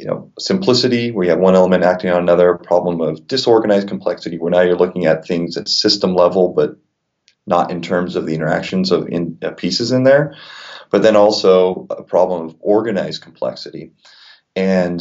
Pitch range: 90-100 Hz